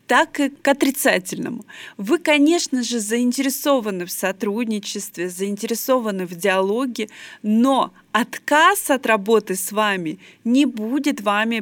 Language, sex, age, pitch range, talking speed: Russian, female, 20-39, 200-270 Hz, 115 wpm